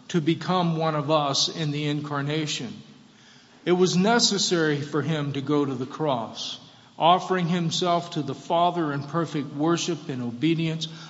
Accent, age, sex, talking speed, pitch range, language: American, 50-69, male, 150 wpm, 145-190 Hz, English